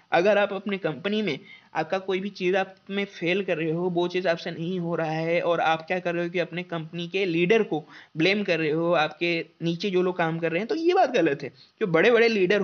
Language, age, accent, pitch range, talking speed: Hindi, 20-39, native, 175-230 Hz, 260 wpm